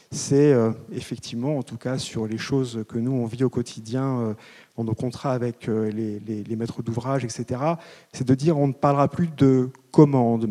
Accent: French